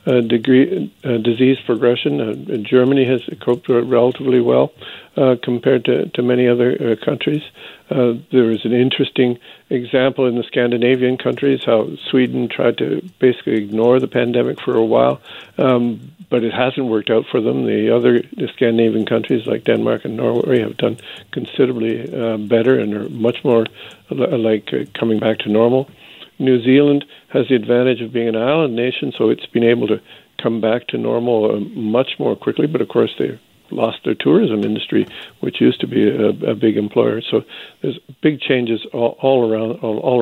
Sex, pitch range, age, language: male, 115-130 Hz, 50-69, English